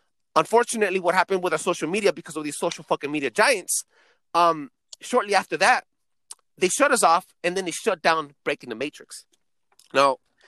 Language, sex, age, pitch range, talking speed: English, male, 30-49, 155-215 Hz, 180 wpm